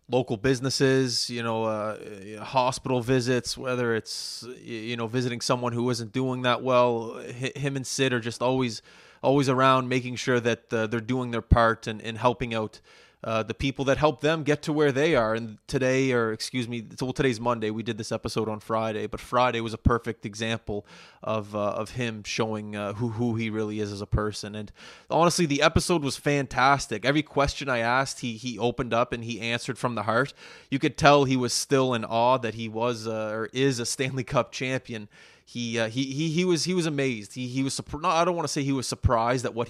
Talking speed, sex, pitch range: 215 wpm, male, 115-135 Hz